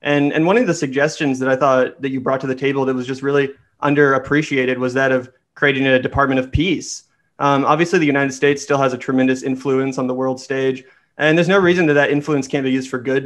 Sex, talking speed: male, 245 wpm